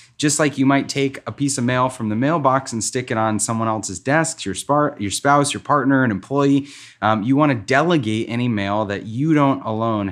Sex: male